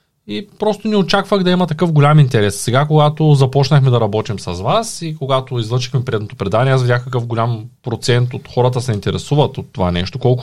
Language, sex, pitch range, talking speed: Bulgarian, male, 115-150 Hz, 195 wpm